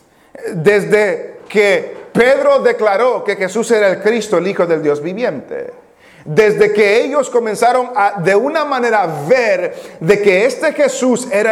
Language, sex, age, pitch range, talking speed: English, male, 40-59, 205-300 Hz, 145 wpm